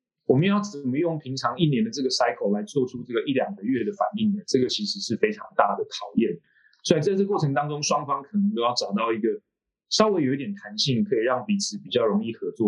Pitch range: 130-210 Hz